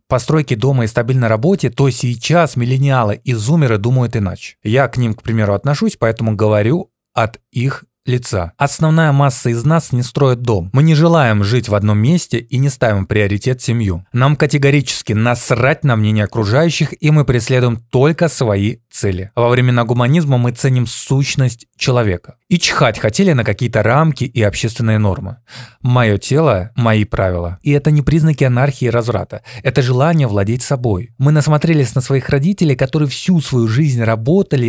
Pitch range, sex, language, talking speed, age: 110-140 Hz, male, Russian, 165 wpm, 20-39